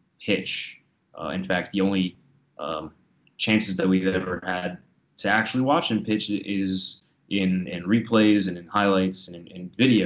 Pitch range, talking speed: 95-110 Hz, 165 wpm